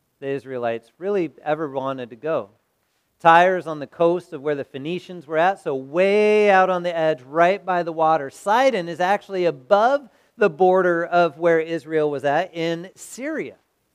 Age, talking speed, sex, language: 40-59, 170 wpm, male, English